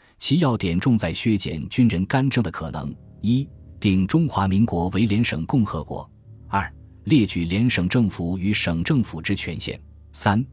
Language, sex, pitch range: Chinese, male, 85-115 Hz